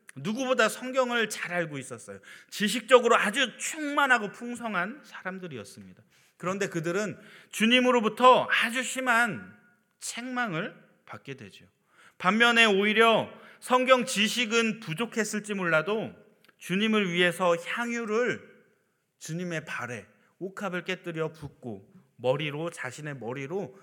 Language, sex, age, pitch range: Korean, male, 30-49, 155-235 Hz